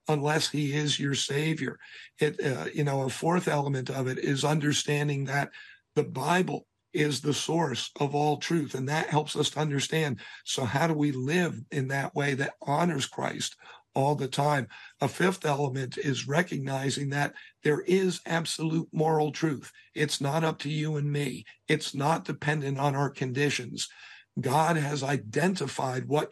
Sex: male